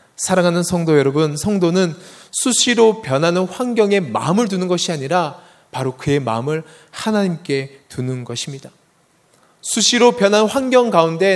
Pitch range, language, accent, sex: 150-210 Hz, Korean, native, male